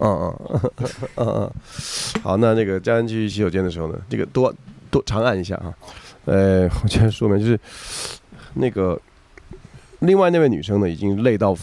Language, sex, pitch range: Chinese, male, 95-125 Hz